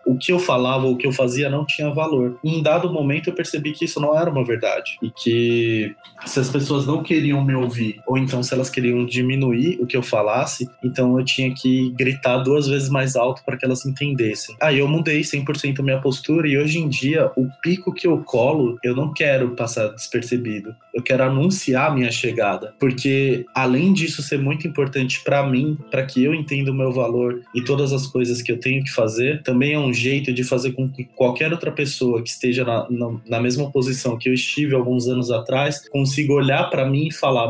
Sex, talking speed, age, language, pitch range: male, 215 wpm, 20-39, Portuguese, 125-140 Hz